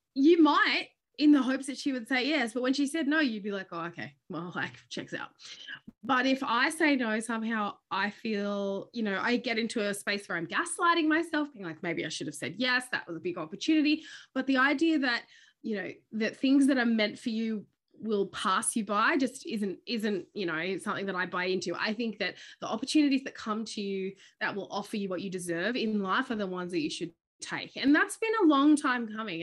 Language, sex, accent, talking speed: English, female, Australian, 235 wpm